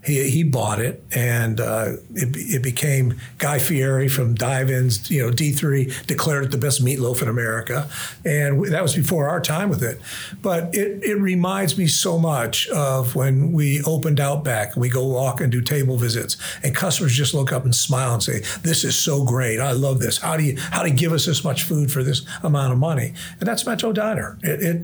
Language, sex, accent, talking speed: English, male, American, 215 wpm